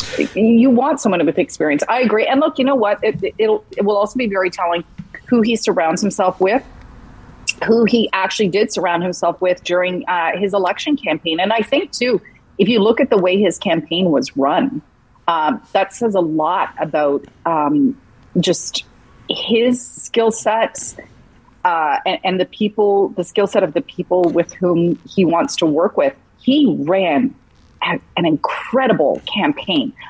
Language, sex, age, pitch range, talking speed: English, female, 40-59, 170-225 Hz, 165 wpm